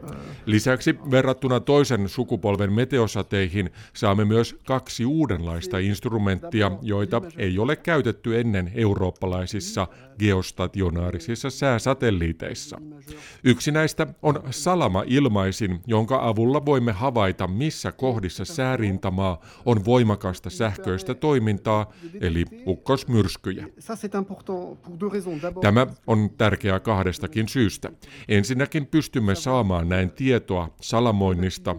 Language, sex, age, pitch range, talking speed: Finnish, male, 50-69, 95-130 Hz, 90 wpm